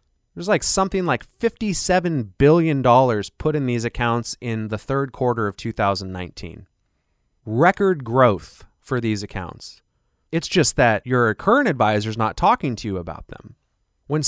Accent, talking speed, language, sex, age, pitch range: American, 145 wpm, English, male, 30-49, 105-160 Hz